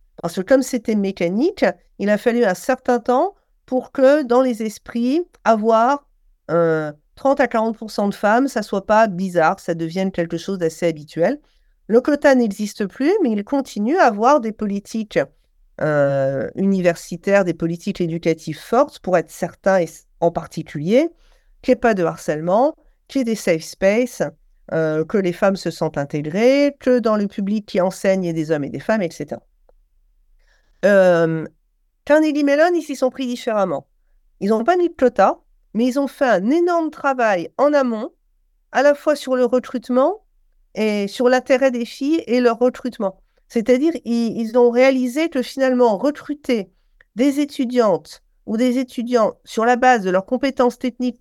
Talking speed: 170 wpm